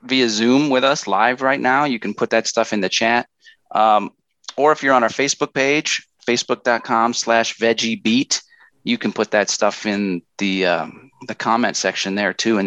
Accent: American